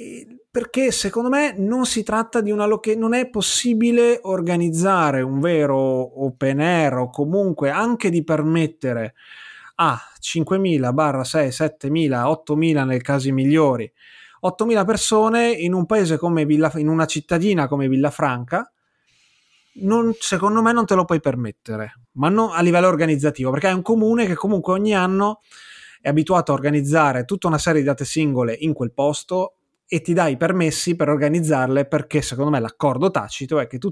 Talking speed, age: 165 wpm, 30-49